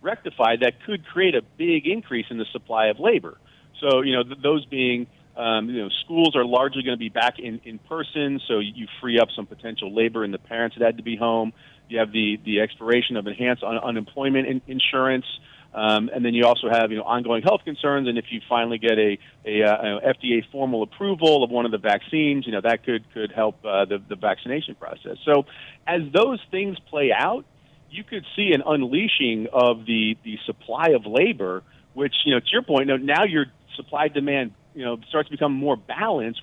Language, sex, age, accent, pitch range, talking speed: English, male, 40-59, American, 115-145 Hz, 210 wpm